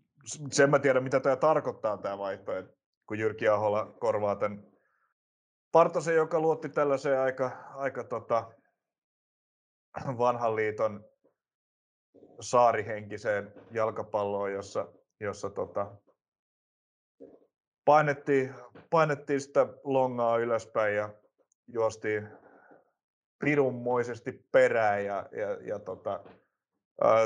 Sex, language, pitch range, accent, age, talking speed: male, Finnish, 105-135 Hz, native, 30-49, 90 wpm